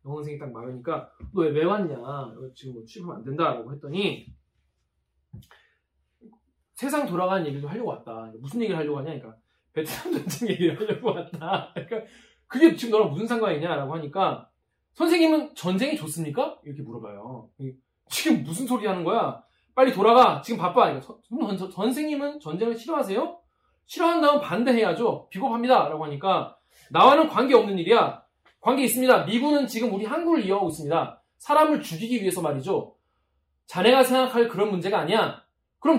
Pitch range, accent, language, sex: 155-255 Hz, native, Korean, male